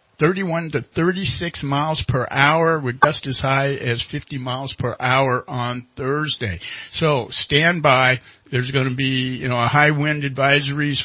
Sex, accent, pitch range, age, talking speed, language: male, American, 115-150 Hz, 50-69, 155 wpm, English